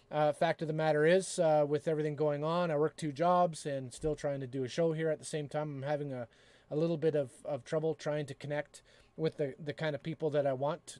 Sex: male